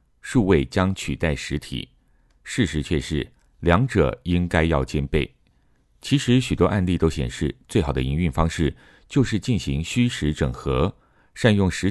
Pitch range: 70-95 Hz